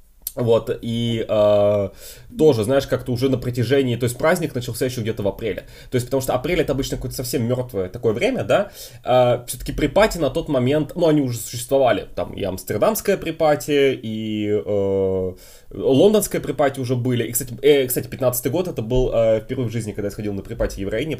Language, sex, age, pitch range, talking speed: Russian, male, 20-39, 100-135 Hz, 195 wpm